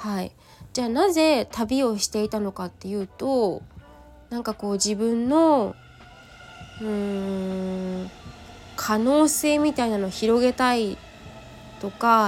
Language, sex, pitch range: Japanese, female, 200-275 Hz